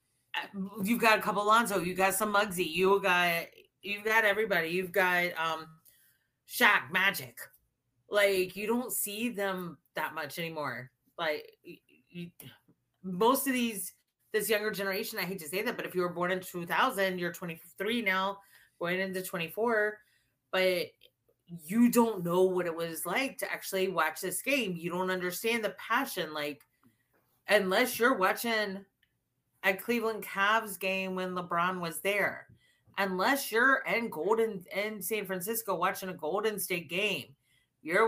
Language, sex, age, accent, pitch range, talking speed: English, female, 30-49, American, 165-205 Hz, 155 wpm